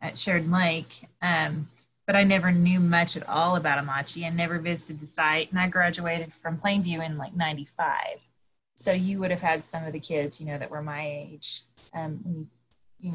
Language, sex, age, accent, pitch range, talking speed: English, female, 30-49, American, 155-195 Hz, 200 wpm